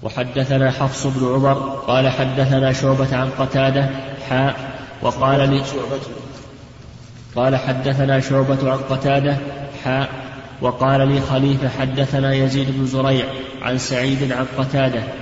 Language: Arabic